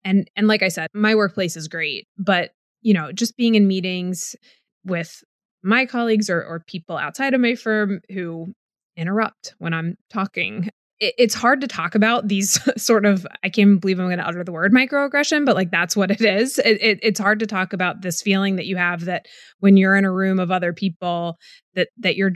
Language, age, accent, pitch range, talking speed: English, 20-39, American, 175-215 Hz, 215 wpm